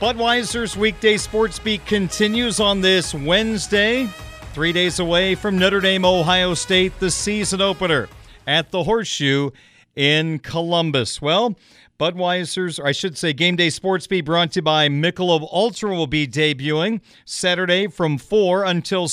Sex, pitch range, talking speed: male, 155-195 Hz, 140 wpm